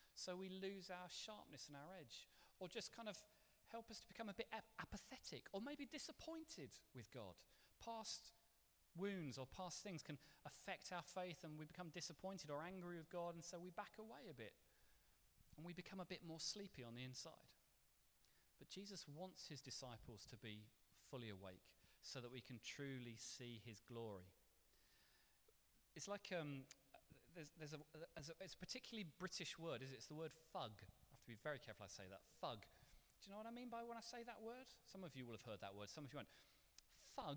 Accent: British